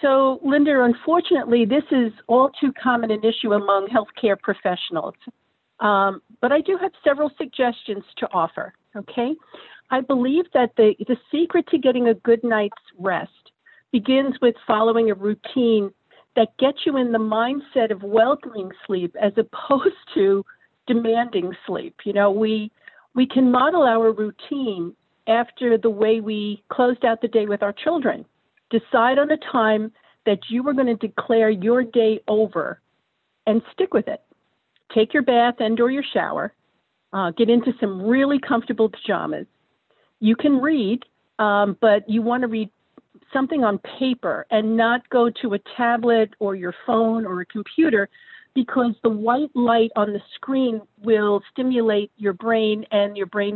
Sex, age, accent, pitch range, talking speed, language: female, 50-69, American, 215-260 Hz, 155 wpm, English